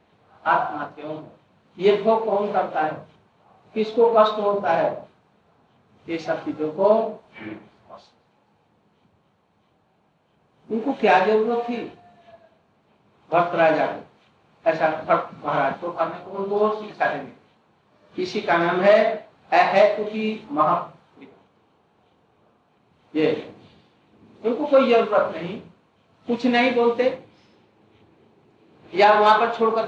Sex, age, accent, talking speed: male, 50-69, native, 75 wpm